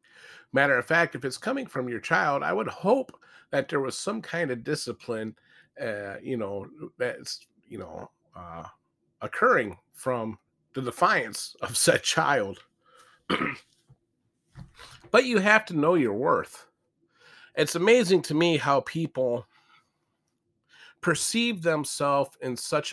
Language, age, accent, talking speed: English, 40-59, American, 130 wpm